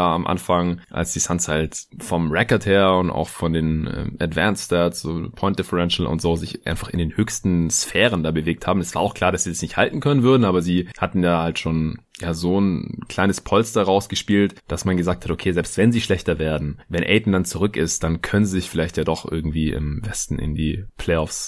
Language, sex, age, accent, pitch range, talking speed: German, male, 30-49, German, 80-100 Hz, 220 wpm